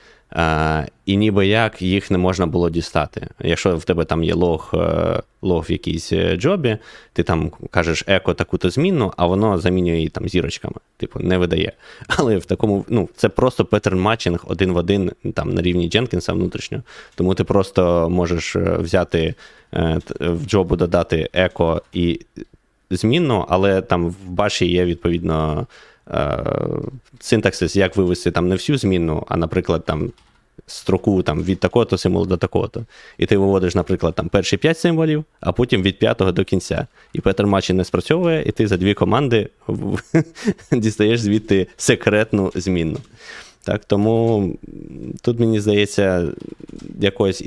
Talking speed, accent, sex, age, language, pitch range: 150 wpm, native, male, 20-39, Ukrainian, 85-105 Hz